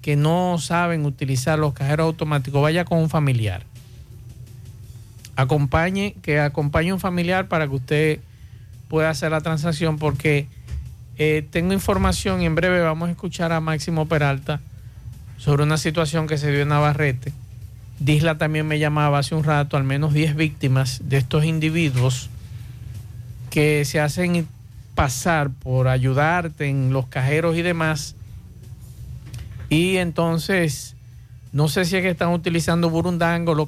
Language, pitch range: Spanish, 120-160 Hz